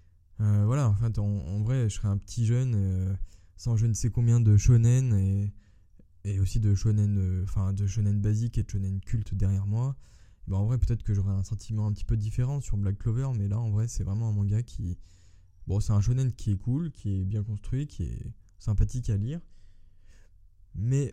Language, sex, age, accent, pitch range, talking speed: French, male, 20-39, French, 95-115 Hz, 215 wpm